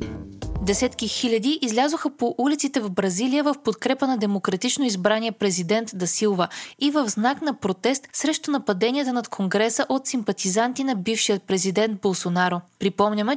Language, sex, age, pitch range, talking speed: Bulgarian, female, 20-39, 200-265 Hz, 135 wpm